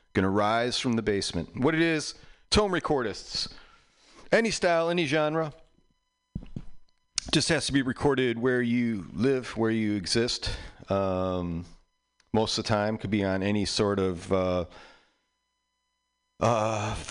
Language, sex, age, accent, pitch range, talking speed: English, male, 40-59, American, 105-135 Hz, 135 wpm